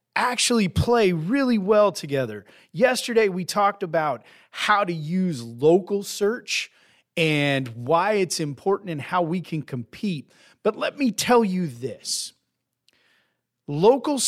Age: 40-59